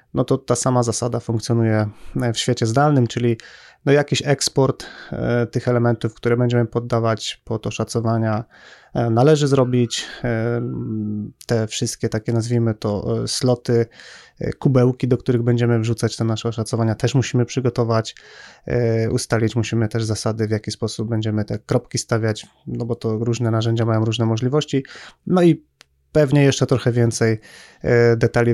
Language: Polish